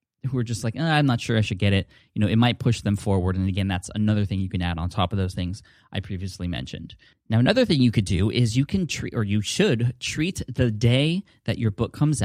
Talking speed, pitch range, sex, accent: 265 wpm, 100-125 Hz, male, American